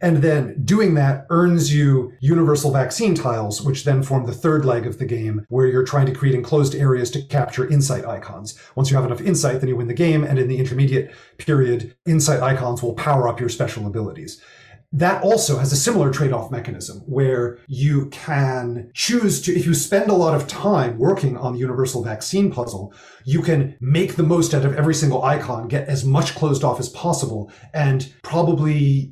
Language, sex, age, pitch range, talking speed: English, male, 30-49, 130-165 Hz, 200 wpm